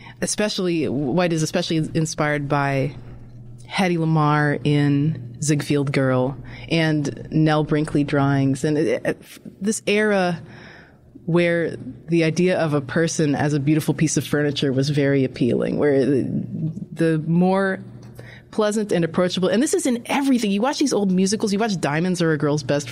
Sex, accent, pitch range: female, American, 145-185 Hz